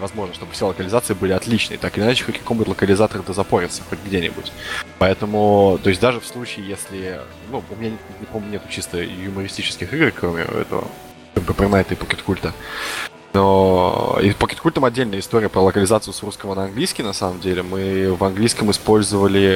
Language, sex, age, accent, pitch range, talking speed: Russian, male, 20-39, native, 95-110 Hz, 170 wpm